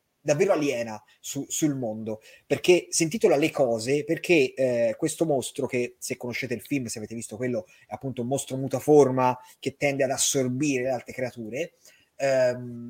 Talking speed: 165 wpm